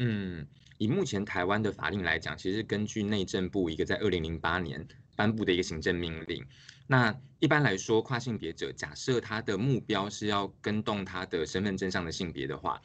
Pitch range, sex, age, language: 90-115 Hz, male, 20-39, Chinese